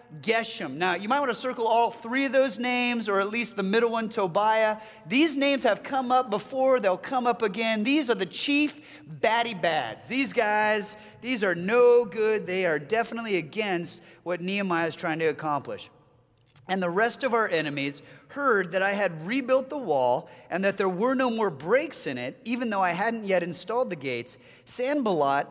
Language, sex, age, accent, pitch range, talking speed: English, male, 30-49, American, 165-235 Hz, 190 wpm